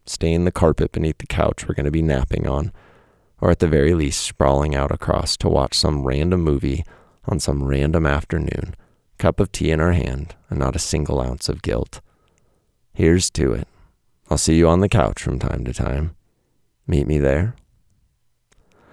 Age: 30-49